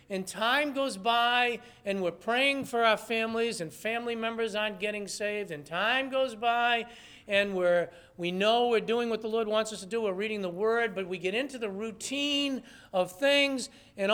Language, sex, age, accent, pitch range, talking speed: English, male, 50-69, American, 170-230 Hz, 195 wpm